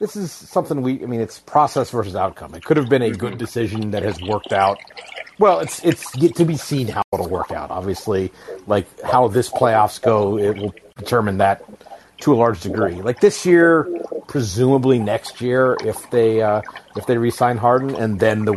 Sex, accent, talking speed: male, American, 200 wpm